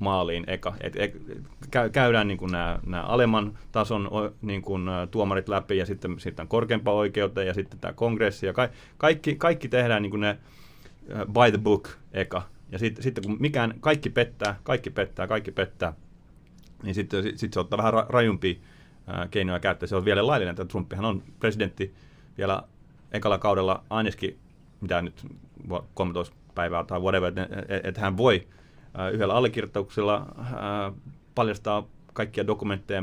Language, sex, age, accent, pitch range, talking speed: Finnish, male, 30-49, native, 90-110 Hz, 150 wpm